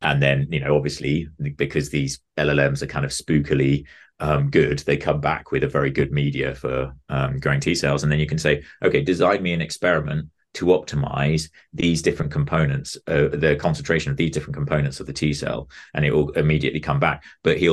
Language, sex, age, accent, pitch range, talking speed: English, male, 30-49, British, 70-80 Hz, 205 wpm